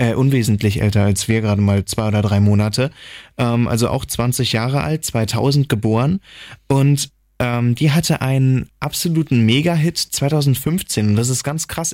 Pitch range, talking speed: 115-145 Hz, 160 wpm